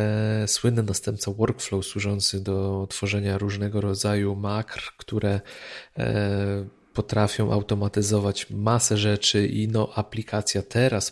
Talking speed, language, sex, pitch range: 95 wpm, Polish, male, 105-130 Hz